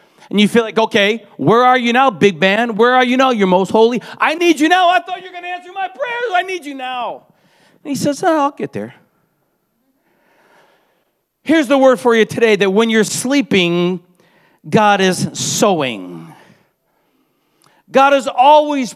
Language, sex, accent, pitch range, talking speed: English, male, American, 185-255 Hz, 180 wpm